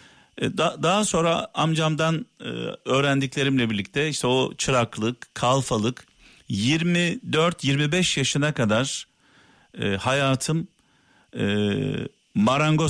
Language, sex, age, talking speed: Turkish, male, 50-69, 65 wpm